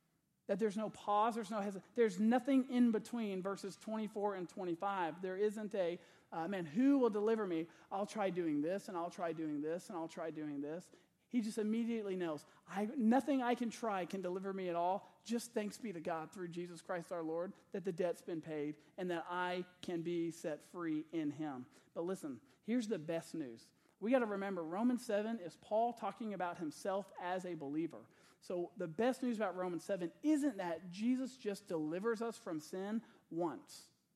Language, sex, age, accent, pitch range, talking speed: English, male, 40-59, American, 170-220 Hz, 195 wpm